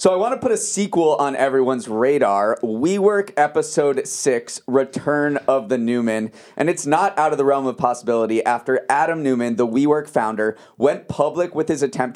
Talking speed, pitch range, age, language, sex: 185 wpm, 115-155 Hz, 30-49, English, male